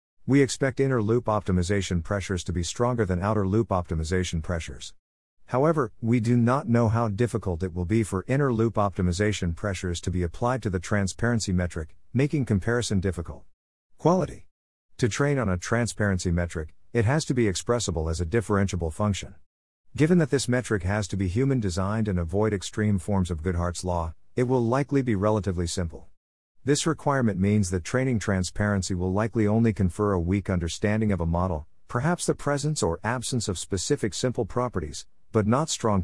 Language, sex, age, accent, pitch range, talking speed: English, male, 50-69, American, 90-115 Hz, 170 wpm